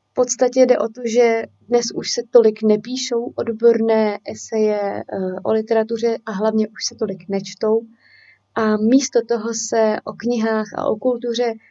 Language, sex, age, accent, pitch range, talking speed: Czech, female, 30-49, native, 215-245 Hz, 155 wpm